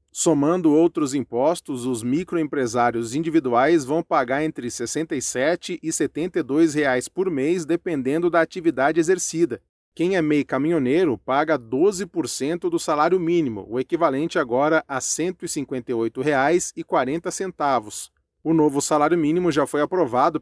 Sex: male